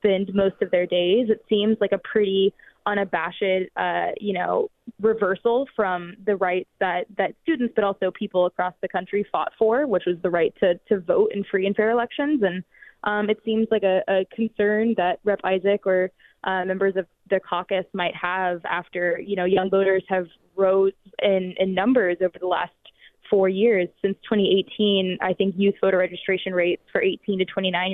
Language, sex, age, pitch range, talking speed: English, female, 20-39, 180-205 Hz, 185 wpm